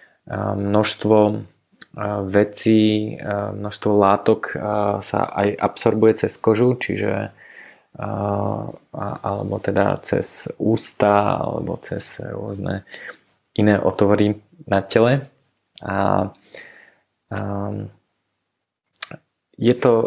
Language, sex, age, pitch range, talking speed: Slovak, male, 20-39, 100-110 Hz, 75 wpm